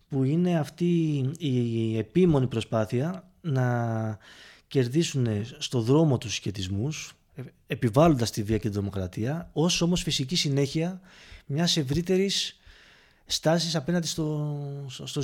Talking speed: 110 wpm